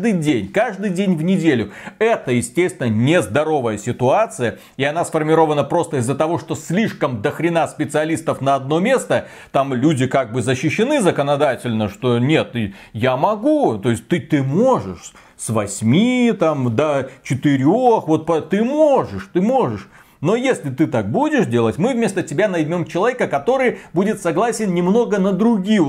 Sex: male